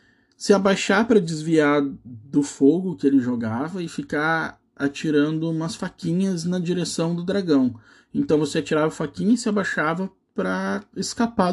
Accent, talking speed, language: Brazilian, 140 wpm, Portuguese